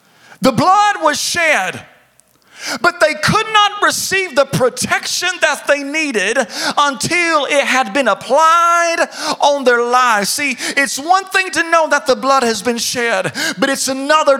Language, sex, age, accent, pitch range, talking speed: English, male, 40-59, American, 230-305 Hz, 155 wpm